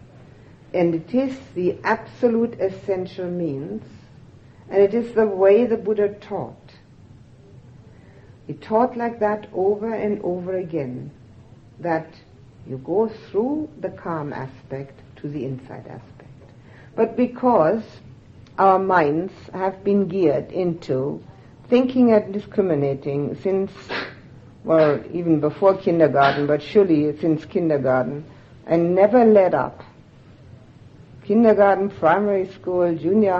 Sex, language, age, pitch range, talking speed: female, English, 60-79, 130-195 Hz, 110 wpm